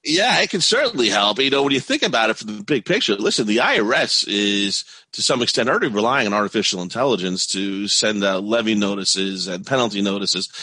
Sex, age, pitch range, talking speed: male, 30-49, 100-125 Hz, 205 wpm